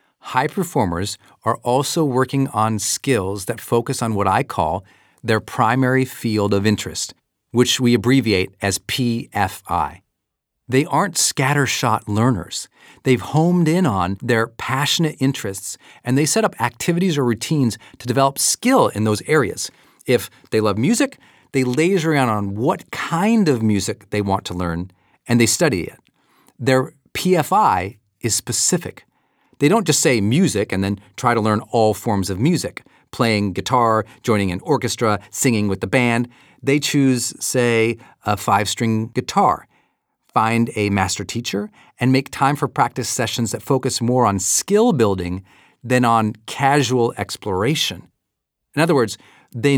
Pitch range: 105-135 Hz